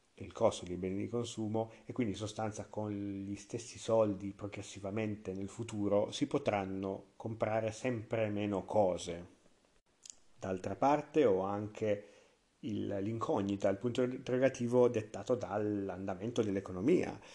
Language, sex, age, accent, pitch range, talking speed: Italian, male, 40-59, native, 100-115 Hz, 120 wpm